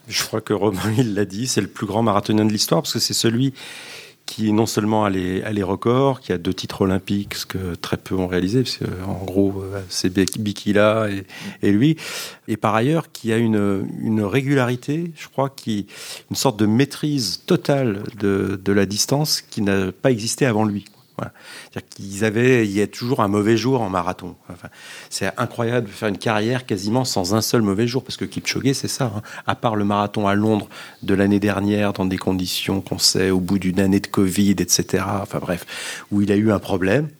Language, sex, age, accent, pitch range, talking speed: French, male, 40-59, French, 100-120 Hz, 210 wpm